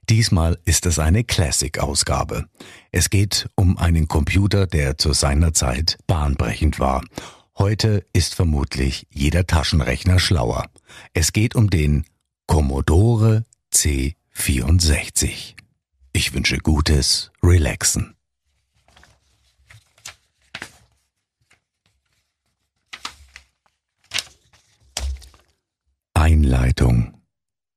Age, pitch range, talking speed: 50-69, 65-85 Hz, 70 wpm